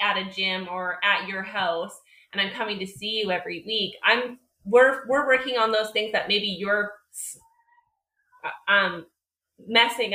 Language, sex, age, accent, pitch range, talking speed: English, female, 20-39, American, 185-225 Hz, 160 wpm